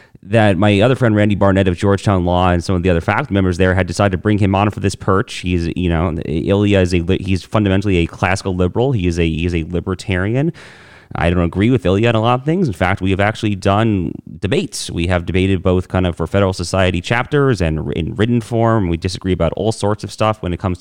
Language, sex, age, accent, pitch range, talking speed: English, male, 30-49, American, 85-110 Hz, 245 wpm